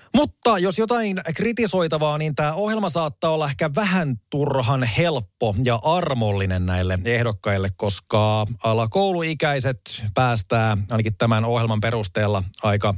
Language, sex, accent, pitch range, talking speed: Finnish, male, native, 110-145 Hz, 115 wpm